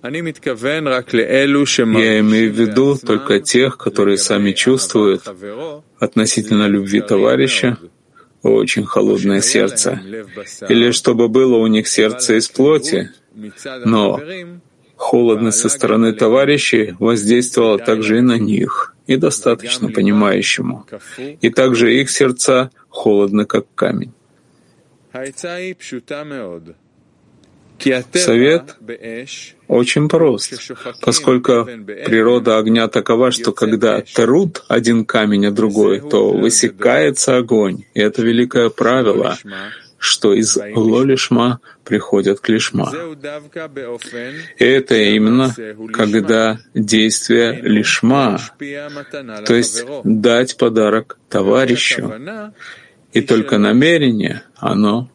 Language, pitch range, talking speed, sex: Hungarian, 110-130 Hz, 90 wpm, male